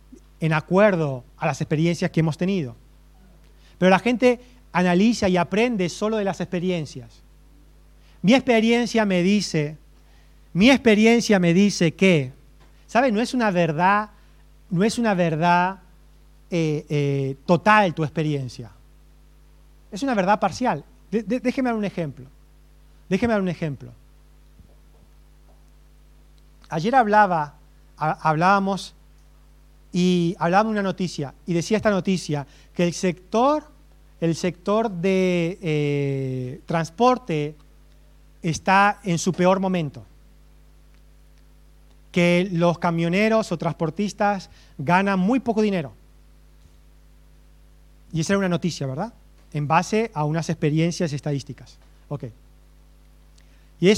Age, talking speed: 40-59, 110 wpm